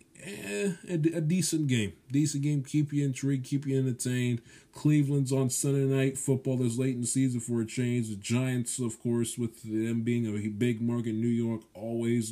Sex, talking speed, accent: male, 200 wpm, American